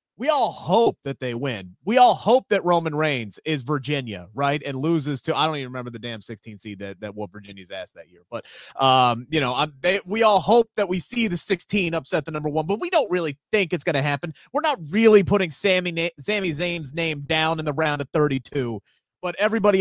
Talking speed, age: 235 wpm, 30-49